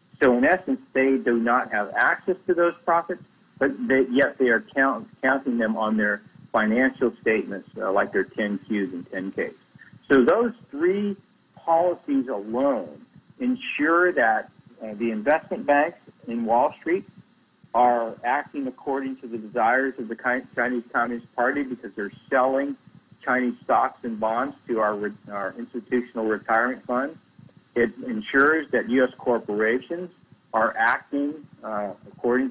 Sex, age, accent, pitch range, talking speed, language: male, 50-69, American, 115-165 Hz, 140 wpm, English